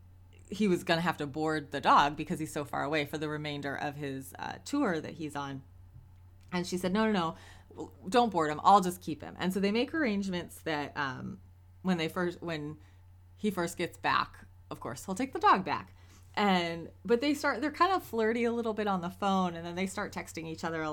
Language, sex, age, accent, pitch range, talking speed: English, female, 20-39, American, 140-185 Hz, 230 wpm